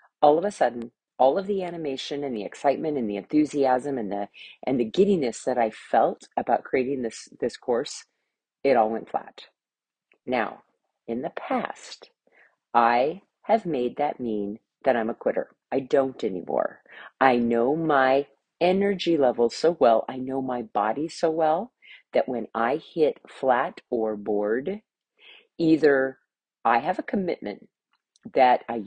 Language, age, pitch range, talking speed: English, 40-59, 120-165 Hz, 155 wpm